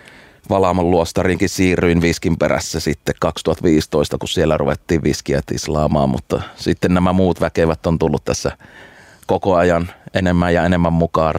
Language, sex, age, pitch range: Finnish, male, 30-49, 80-90 Hz